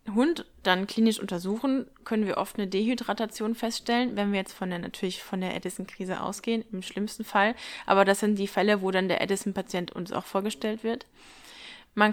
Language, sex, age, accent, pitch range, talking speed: German, female, 20-39, German, 195-230 Hz, 185 wpm